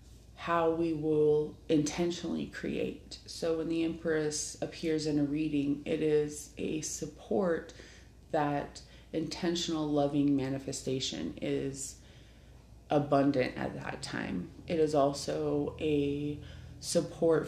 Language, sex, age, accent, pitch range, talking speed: English, female, 30-49, American, 140-165 Hz, 105 wpm